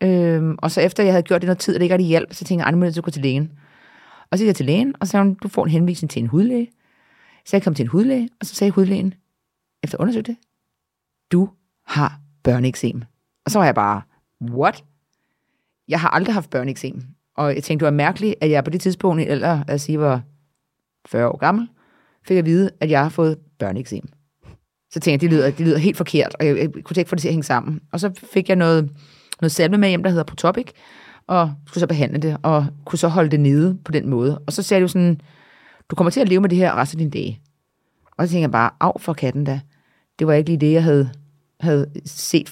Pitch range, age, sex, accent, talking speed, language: 145-190 Hz, 30-49, female, native, 245 wpm, Danish